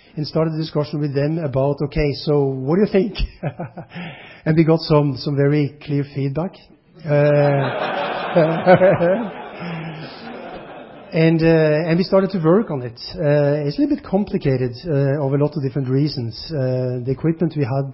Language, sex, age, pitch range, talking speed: English, male, 30-49, 130-160 Hz, 165 wpm